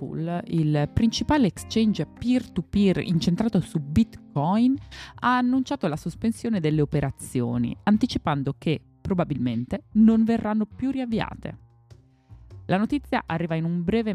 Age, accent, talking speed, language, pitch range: 20-39, native, 110 wpm, Italian, 145-210 Hz